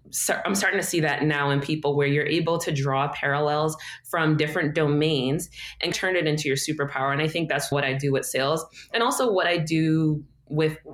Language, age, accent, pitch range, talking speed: English, 20-39, American, 145-185 Hz, 210 wpm